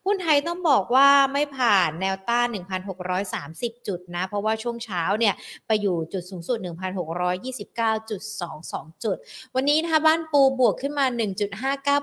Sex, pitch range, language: female, 190-245 Hz, Thai